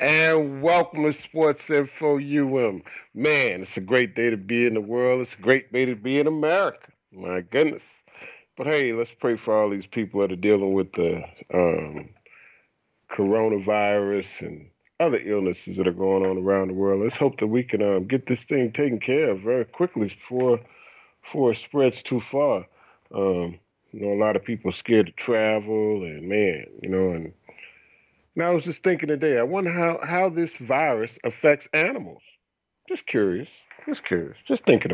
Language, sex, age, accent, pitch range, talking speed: English, male, 40-59, American, 105-150 Hz, 185 wpm